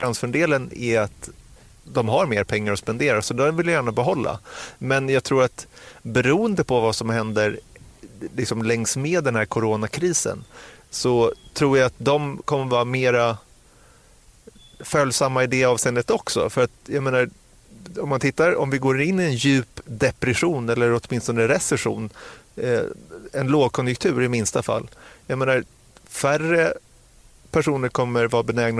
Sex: male